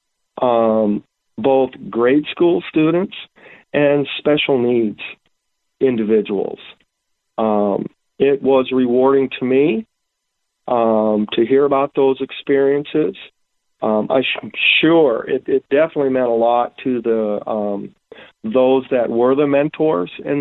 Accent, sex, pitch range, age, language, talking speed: American, male, 120-150 Hz, 40-59, English, 120 wpm